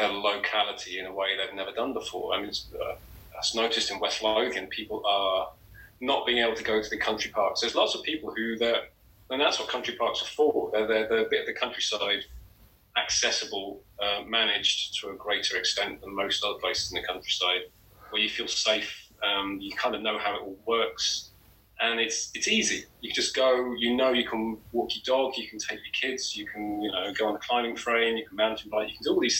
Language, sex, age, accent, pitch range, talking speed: English, male, 30-49, British, 100-120 Hz, 230 wpm